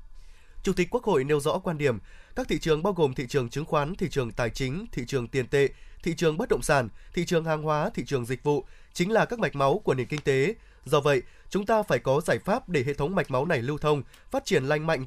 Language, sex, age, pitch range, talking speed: Vietnamese, male, 20-39, 140-185 Hz, 265 wpm